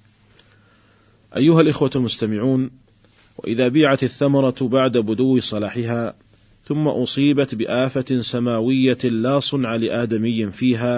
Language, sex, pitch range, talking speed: Arabic, male, 110-130 Hz, 95 wpm